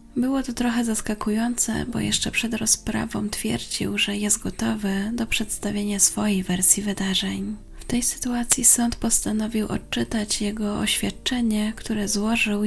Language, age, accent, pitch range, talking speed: Polish, 20-39, native, 195-225 Hz, 130 wpm